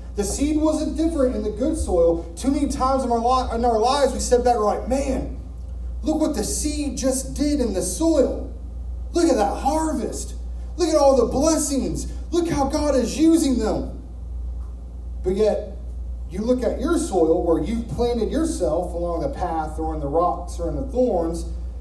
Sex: male